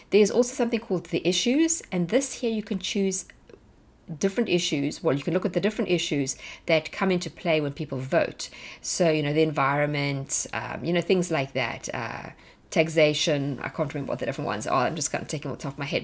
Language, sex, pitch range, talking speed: English, female, 155-195 Hz, 230 wpm